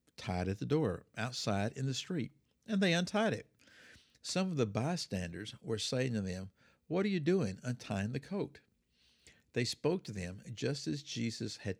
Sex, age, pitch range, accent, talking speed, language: male, 60-79, 105-140 Hz, American, 180 wpm, English